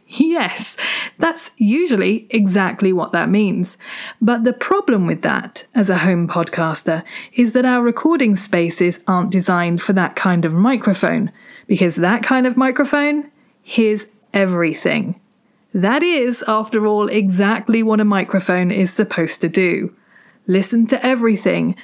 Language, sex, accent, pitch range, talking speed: English, female, British, 185-240 Hz, 135 wpm